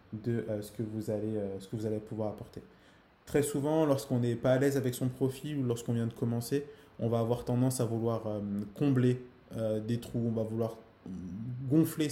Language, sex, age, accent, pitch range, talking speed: French, male, 20-39, French, 110-130 Hz, 215 wpm